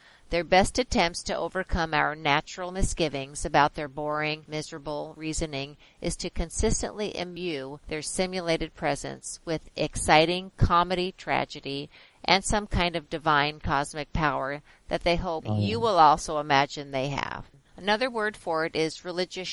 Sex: female